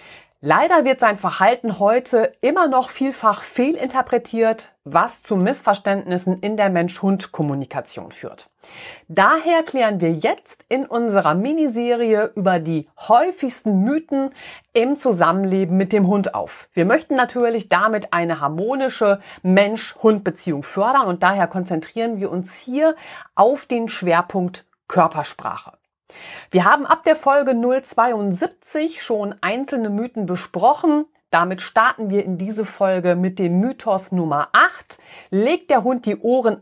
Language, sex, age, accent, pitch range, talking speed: German, female, 40-59, German, 185-250 Hz, 125 wpm